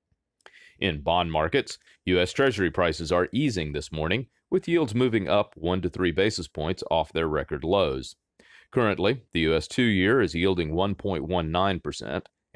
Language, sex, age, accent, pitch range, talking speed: English, male, 40-59, American, 85-110 Hz, 150 wpm